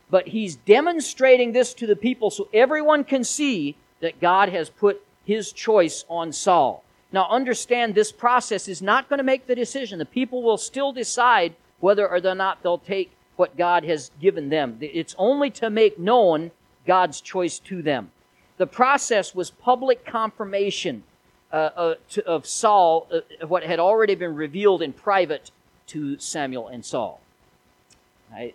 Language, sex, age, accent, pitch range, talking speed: English, male, 50-69, American, 140-220 Hz, 155 wpm